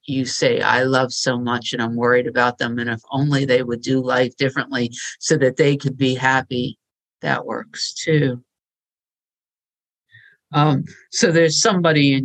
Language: English